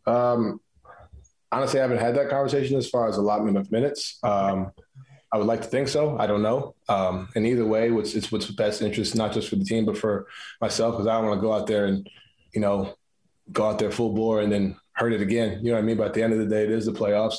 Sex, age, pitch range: male, 20-39, 100-110 Hz